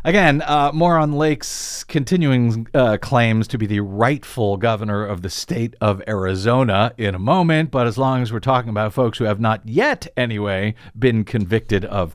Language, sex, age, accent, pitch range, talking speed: English, male, 50-69, American, 105-145 Hz, 185 wpm